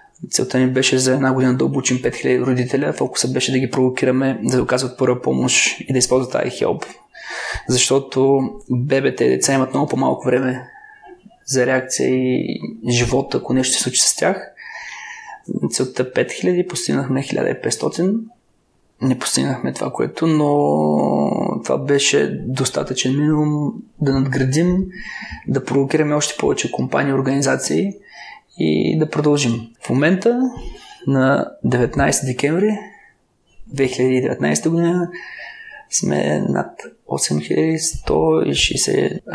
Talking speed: 115 wpm